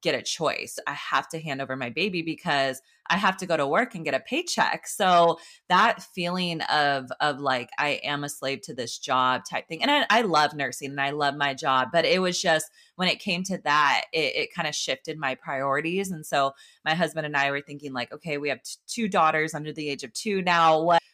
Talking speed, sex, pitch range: 235 wpm, female, 135-165 Hz